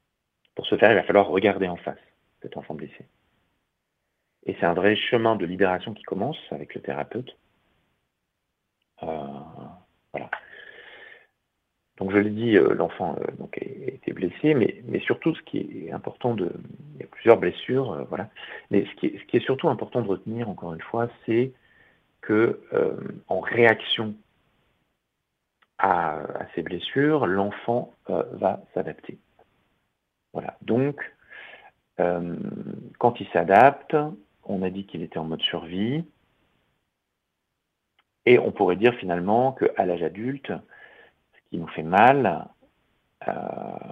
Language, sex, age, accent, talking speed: French, male, 50-69, French, 145 wpm